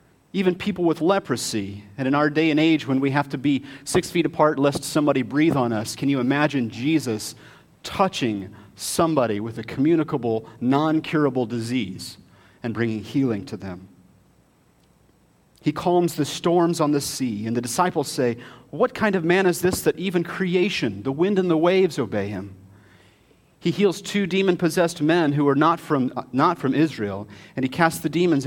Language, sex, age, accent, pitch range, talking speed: English, male, 40-59, American, 110-160 Hz, 175 wpm